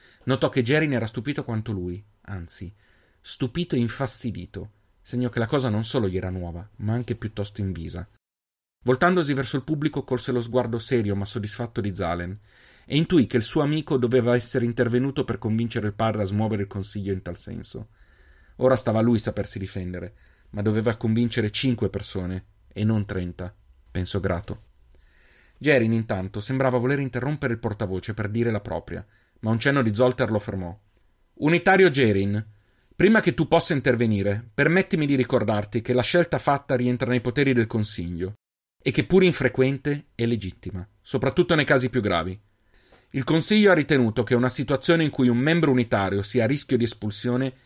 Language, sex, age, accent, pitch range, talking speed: Italian, male, 30-49, native, 100-130 Hz, 170 wpm